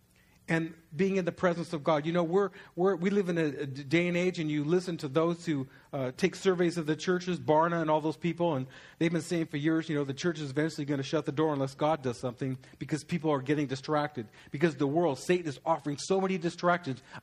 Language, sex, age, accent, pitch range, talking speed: English, male, 40-59, American, 145-180 Hz, 245 wpm